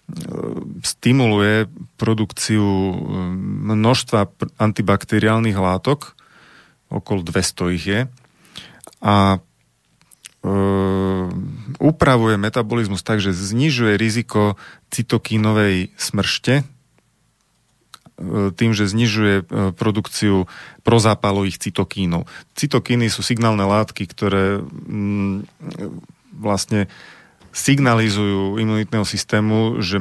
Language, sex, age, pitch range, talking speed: Slovak, male, 30-49, 100-115 Hz, 70 wpm